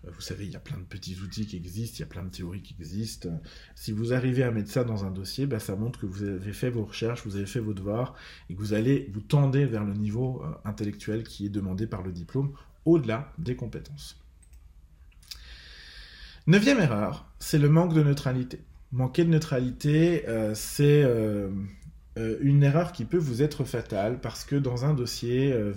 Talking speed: 205 wpm